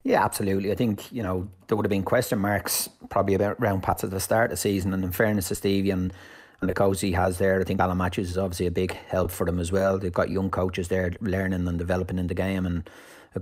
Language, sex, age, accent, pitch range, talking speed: English, male, 30-49, Irish, 90-100 Hz, 270 wpm